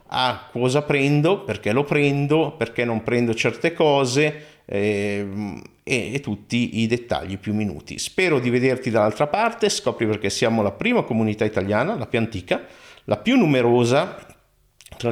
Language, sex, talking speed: Italian, male, 150 wpm